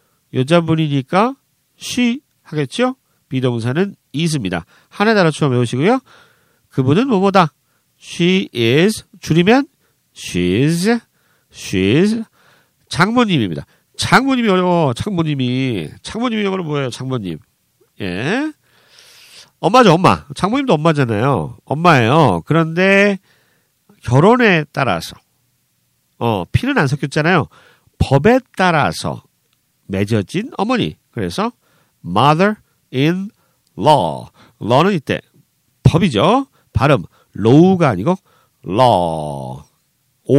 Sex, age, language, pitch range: male, 40-59, Korean, 125-185 Hz